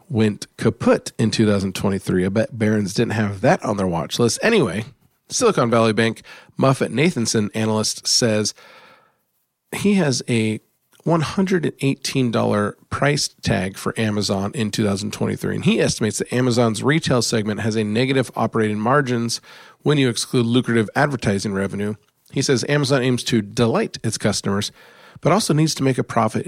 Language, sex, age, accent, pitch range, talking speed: English, male, 40-59, American, 105-130 Hz, 145 wpm